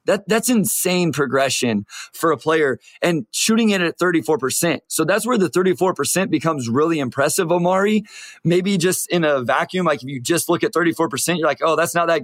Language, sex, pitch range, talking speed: English, male, 145-190 Hz, 190 wpm